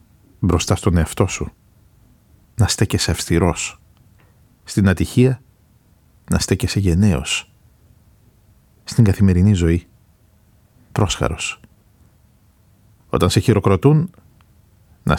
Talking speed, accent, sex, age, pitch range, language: 80 wpm, native, male, 50-69, 90-110 Hz, Greek